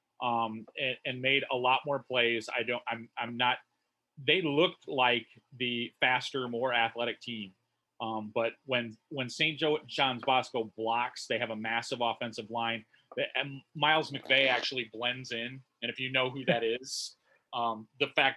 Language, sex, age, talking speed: English, male, 30-49, 170 wpm